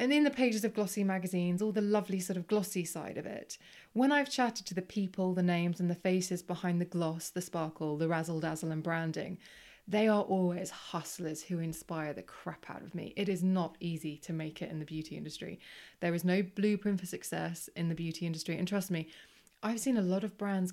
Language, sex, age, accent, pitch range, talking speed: English, female, 20-39, British, 170-200 Hz, 225 wpm